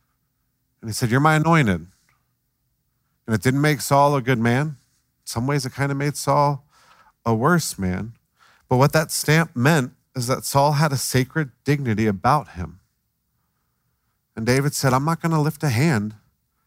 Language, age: English, 40-59